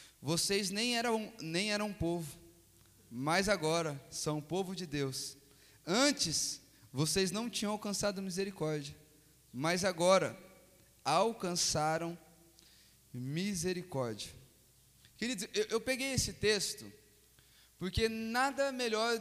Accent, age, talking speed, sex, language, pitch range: Brazilian, 20-39, 95 wpm, male, Portuguese, 165-245 Hz